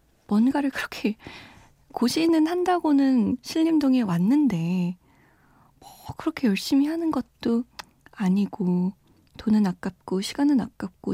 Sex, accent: female, native